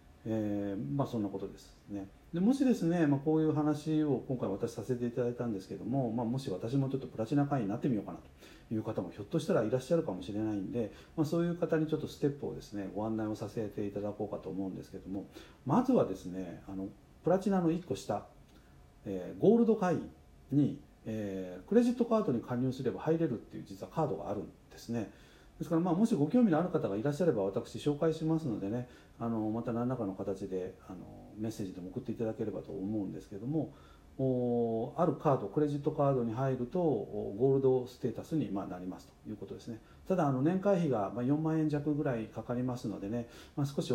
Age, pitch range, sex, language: 40-59, 100-155 Hz, male, Japanese